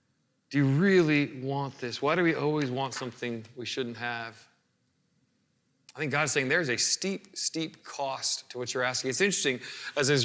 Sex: male